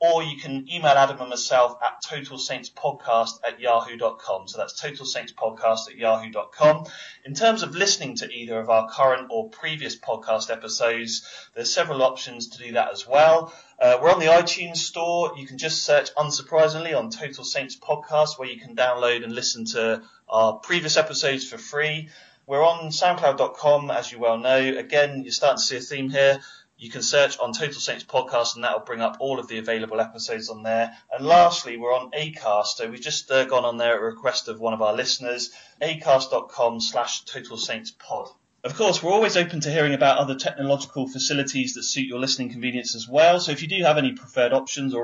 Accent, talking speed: British, 205 wpm